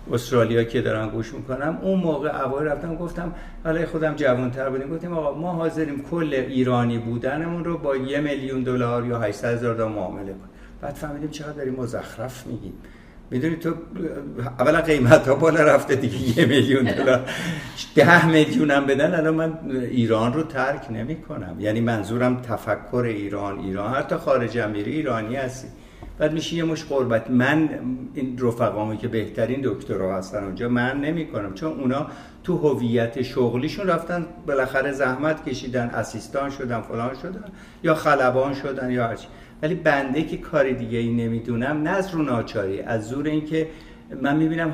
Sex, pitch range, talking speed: male, 120-155 Hz, 155 wpm